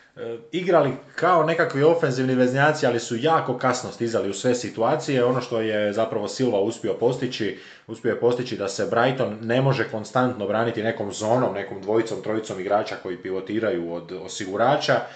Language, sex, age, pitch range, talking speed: Croatian, male, 20-39, 100-125 Hz, 160 wpm